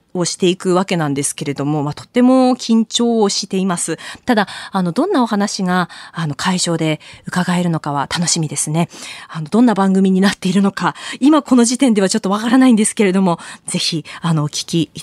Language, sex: Japanese, female